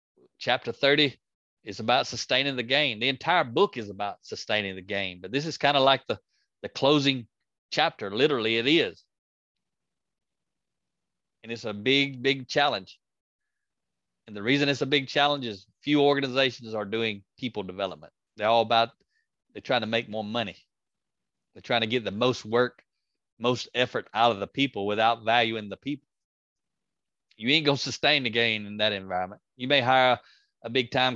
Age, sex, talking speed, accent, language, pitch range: 30-49, male, 175 wpm, American, English, 105-140 Hz